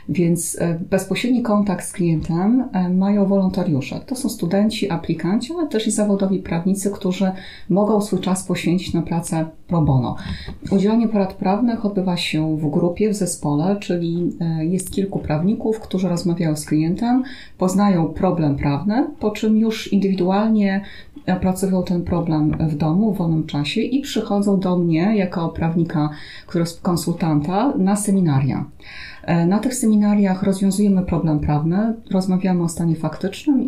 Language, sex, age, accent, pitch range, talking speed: Polish, female, 30-49, native, 165-200 Hz, 140 wpm